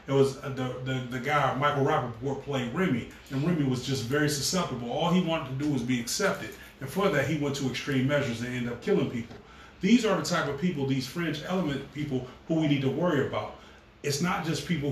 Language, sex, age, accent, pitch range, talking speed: English, male, 30-49, American, 130-160 Hz, 230 wpm